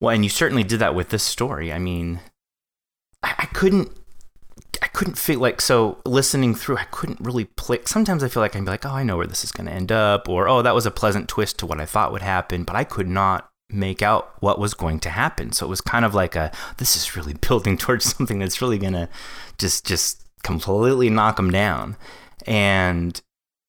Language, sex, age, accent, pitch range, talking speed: English, male, 30-49, American, 90-115 Hz, 225 wpm